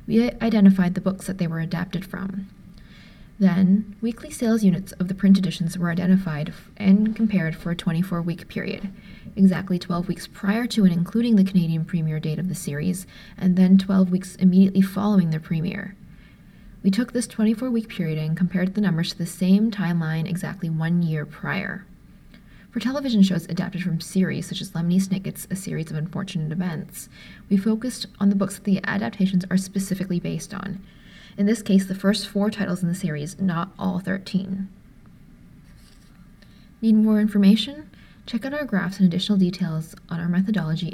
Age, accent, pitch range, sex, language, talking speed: 20-39, American, 175-200 Hz, female, English, 170 wpm